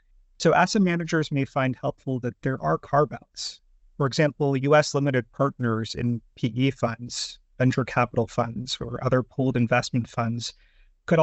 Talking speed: 150 wpm